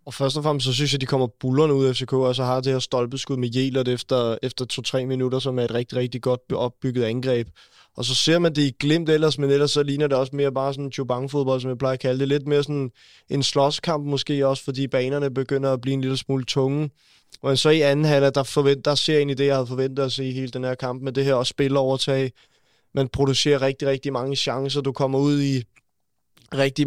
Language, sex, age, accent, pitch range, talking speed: Danish, male, 20-39, native, 125-140 Hz, 245 wpm